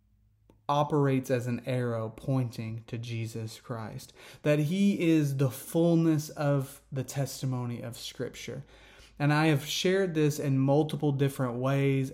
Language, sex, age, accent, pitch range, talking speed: English, male, 30-49, American, 130-145 Hz, 135 wpm